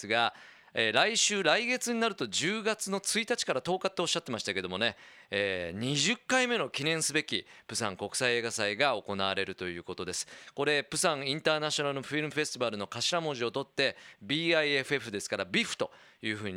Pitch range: 110-160 Hz